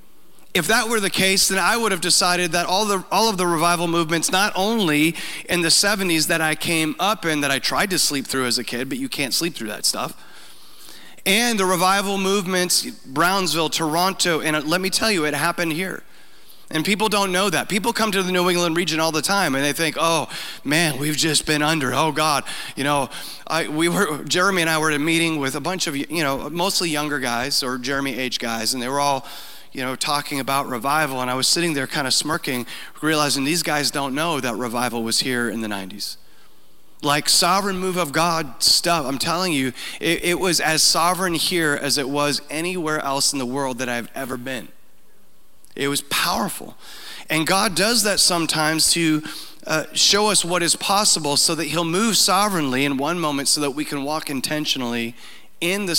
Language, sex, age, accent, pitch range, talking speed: English, male, 30-49, American, 140-180 Hz, 210 wpm